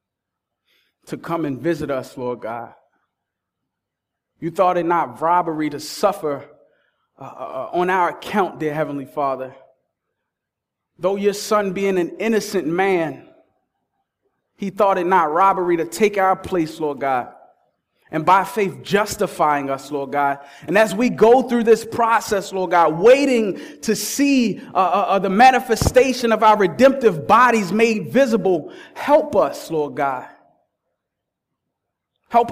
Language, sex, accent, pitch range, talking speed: English, male, American, 175-230 Hz, 135 wpm